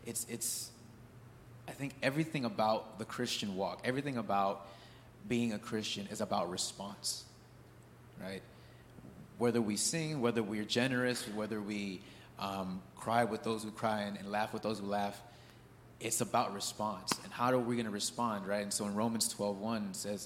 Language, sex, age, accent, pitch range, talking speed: English, male, 30-49, American, 100-120 Hz, 170 wpm